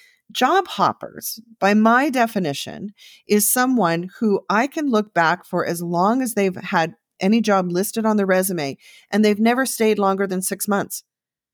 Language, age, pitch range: English, 40-59, 175-225 Hz